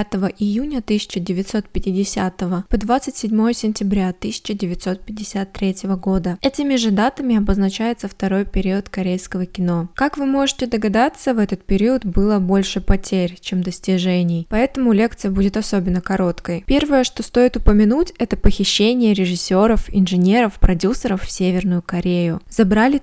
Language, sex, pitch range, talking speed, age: Russian, female, 190-230 Hz, 120 wpm, 20-39